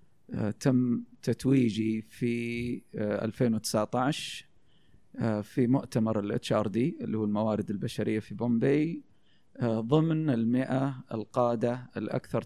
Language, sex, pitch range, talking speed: Arabic, male, 115-145 Hz, 80 wpm